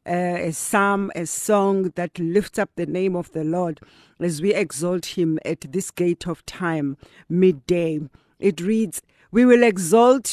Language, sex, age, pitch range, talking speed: English, female, 50-69, 175-220 Hz, 165 wpm